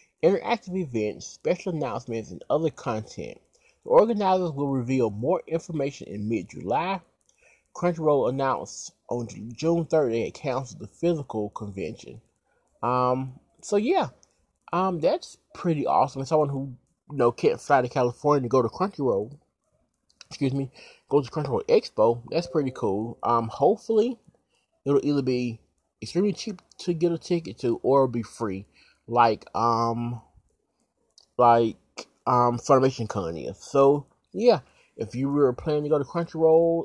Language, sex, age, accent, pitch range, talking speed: English, male, 20-39, American, 120-170 Hz, 140 wpm